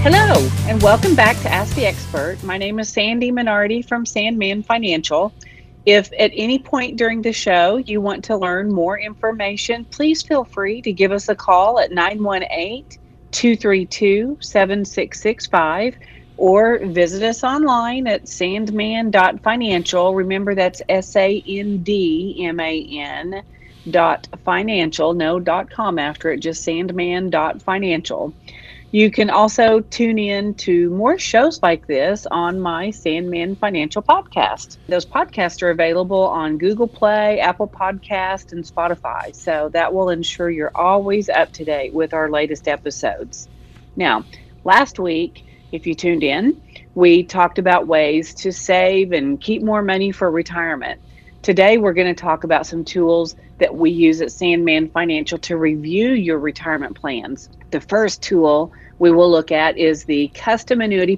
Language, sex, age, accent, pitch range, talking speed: English, female, 40-59, American, 165-215 Hz, 135 wpm